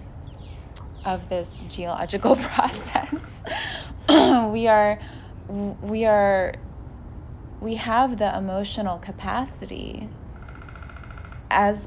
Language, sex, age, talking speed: English, female, 20-39, 70 wpm